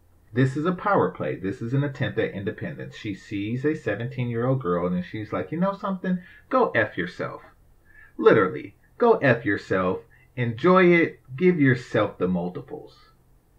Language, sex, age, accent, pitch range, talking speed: English, male, 30-49, American, 110-145 Hz, 155 wpm